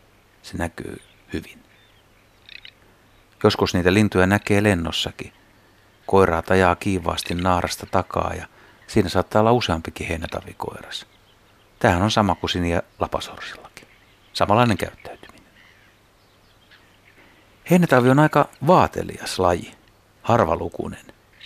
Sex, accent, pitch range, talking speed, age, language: male, native, 90-110 Hz, 90 wpm, 60-79, Finnish